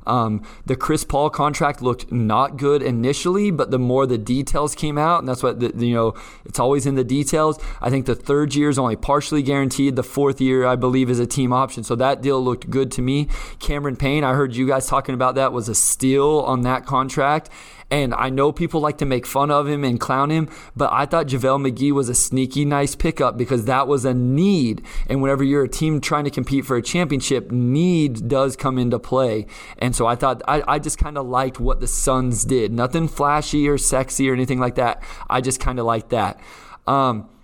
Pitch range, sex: 125-145 Hz, male